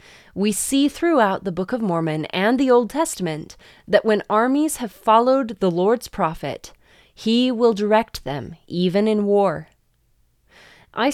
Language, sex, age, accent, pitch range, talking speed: English, female, 20-39, American, 180-235 Hz, 145 wpm